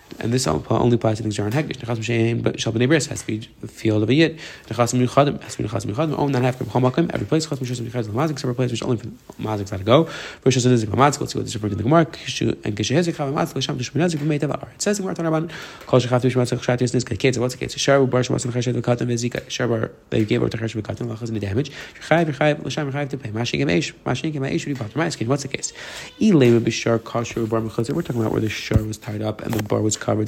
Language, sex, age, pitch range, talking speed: English, male, 30-49, 110-140 Hz, 95 wpm